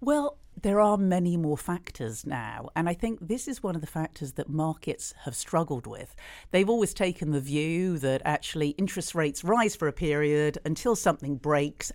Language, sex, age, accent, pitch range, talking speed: English, female, 50-69, British, 150-180 Hz, 185 wpm